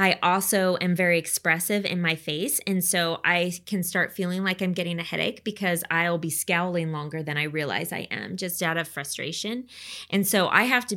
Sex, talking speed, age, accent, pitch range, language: female, 210 wpm, 20-39, American, 170-200 Hz, English